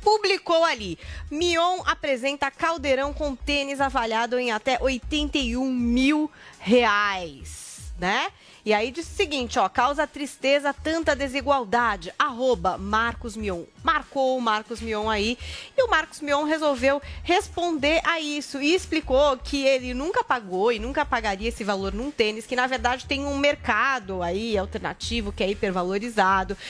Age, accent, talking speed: 30-49, Brazilian, 145 wpm